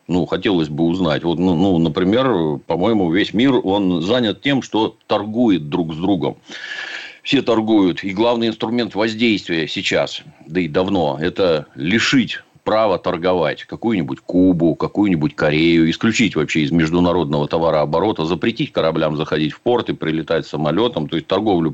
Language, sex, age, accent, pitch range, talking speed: Russian, male, 40-59, native, 80-105 Hz, 145 wpm